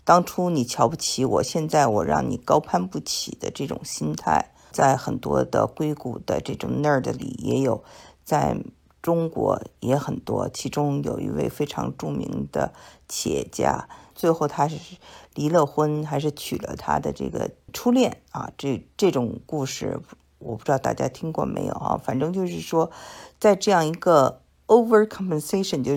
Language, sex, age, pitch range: Chinese, female, 50-69, 145-180 Hz